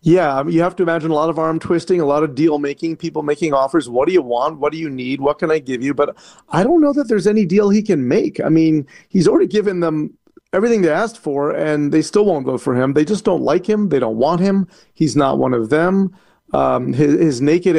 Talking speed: 255 wpm